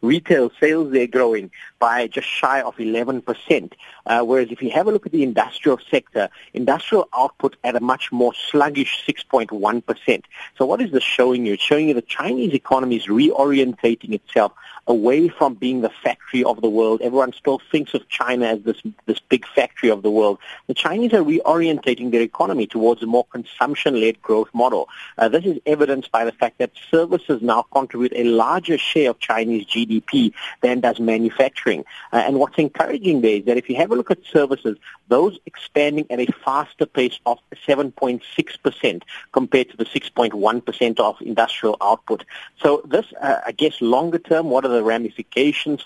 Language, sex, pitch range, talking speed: English, male, 115-140 Hz, 180 wpm